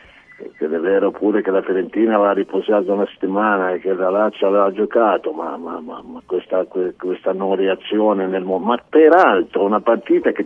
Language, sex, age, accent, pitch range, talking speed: Italian, male, 50-69, native, 95-120 Hz, 185 wpm